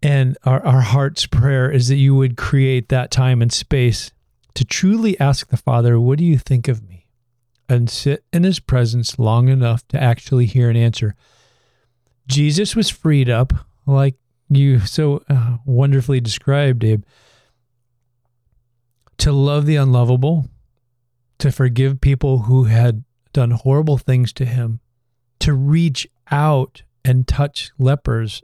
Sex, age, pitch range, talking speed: male, 40-59, 120-140 Hz, 145 wpm